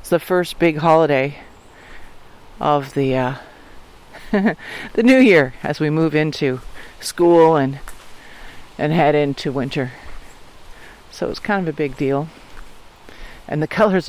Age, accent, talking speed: 50-69, American, 130 wpm